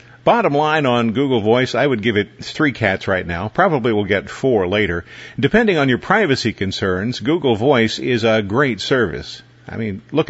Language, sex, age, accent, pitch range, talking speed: English, male, 50-69, American, 105-135 Hz, 185 wpm